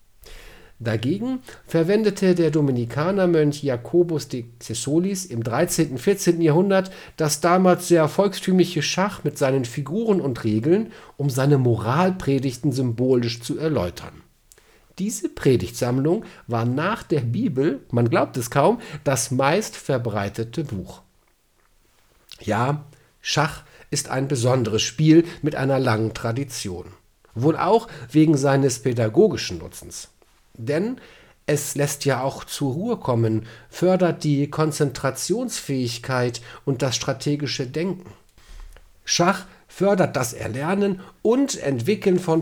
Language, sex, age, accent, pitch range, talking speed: German, male, 50-69, German, 120-175 Hz, 110 wpm